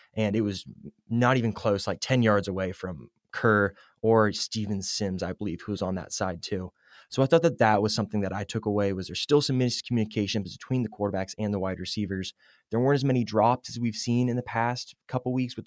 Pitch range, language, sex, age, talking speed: 100-120 Hz, English, male, 20-39, 225 wpm